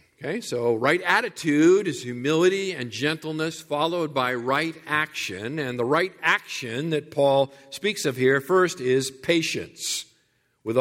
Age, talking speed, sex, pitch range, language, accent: 50-69, 140 wpm, male, 140-170 Hz, English, American